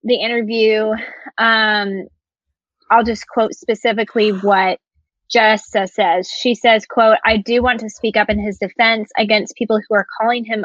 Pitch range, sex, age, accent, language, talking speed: 200-235 Hz, female, 20-39, American, English, 160 wpm